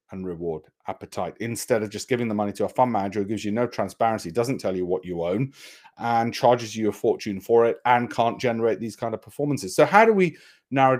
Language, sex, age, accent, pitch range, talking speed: English, male, 40-59, British, 105-135 Hz, 235 wpm